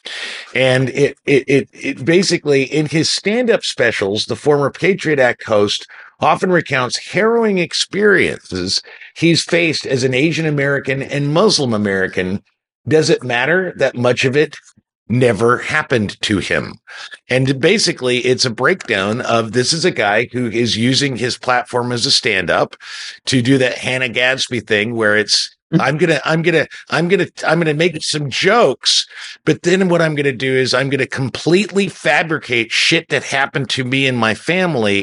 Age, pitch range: 50-69, 120-160 Hz